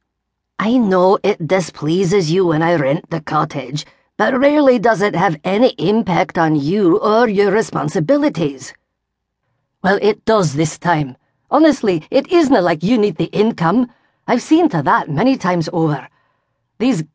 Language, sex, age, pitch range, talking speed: English, female, 40-59, 150-215 Hz, 155 wpm